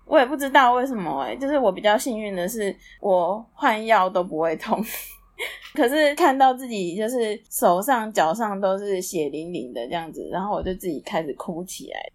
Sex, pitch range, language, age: female, 180-230 Hz, Chinese, 20-39